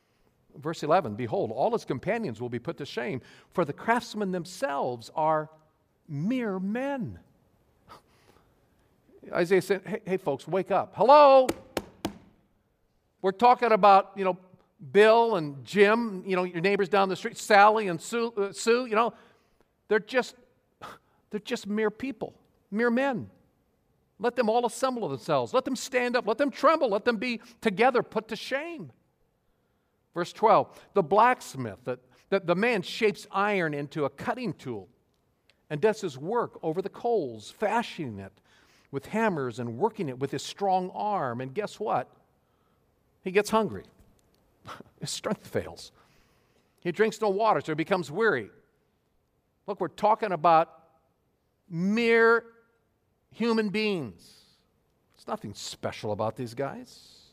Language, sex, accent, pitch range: English, male, American, 160-230 Hz